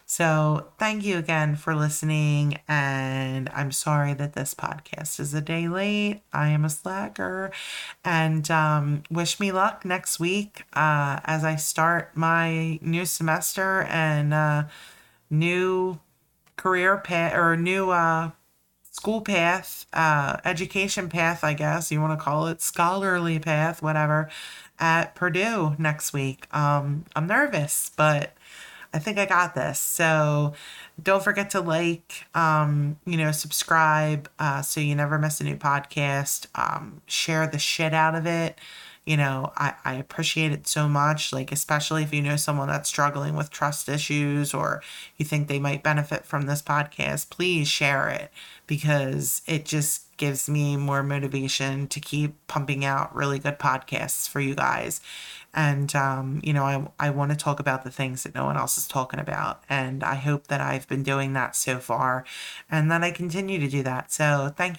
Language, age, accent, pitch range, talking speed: English, 30-49, American, 145-165 Hz, 165 wpm